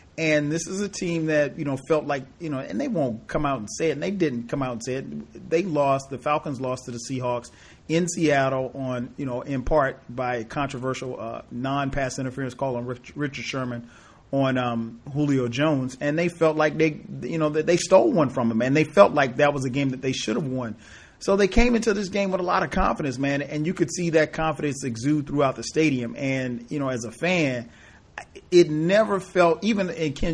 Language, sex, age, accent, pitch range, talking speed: English, male, 40-59, American, 125-155 Hz, 230 wpm